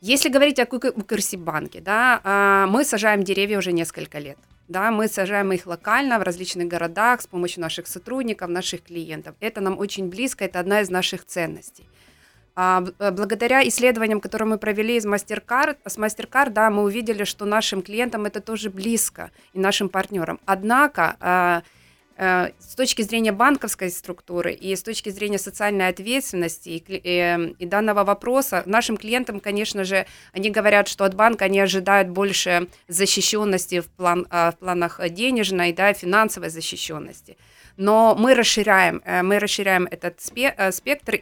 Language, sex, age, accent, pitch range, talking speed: Ukrainian, female, 30-49, native, 180-220 Hz, 145 wpm